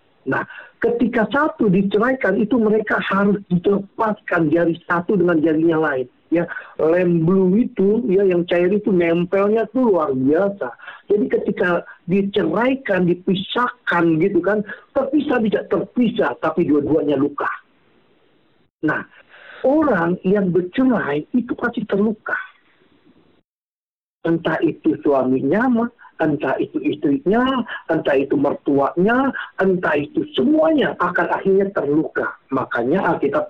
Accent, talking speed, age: native, 110 wpm, 50-69